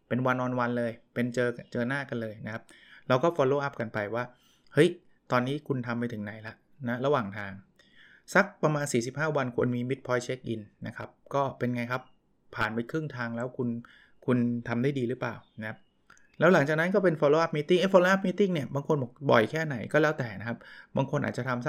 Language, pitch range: Thai, 115-140 Hz